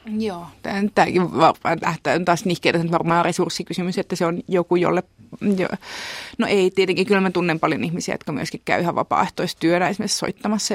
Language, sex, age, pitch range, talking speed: Finnish, female, 30-49, 170-195 Hz, 150 wpm